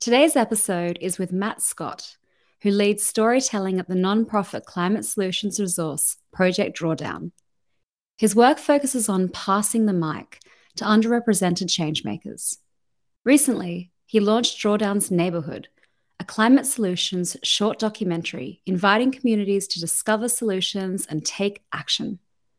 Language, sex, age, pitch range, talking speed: English, female, 30-49, 175-220 Hz, 120 wpm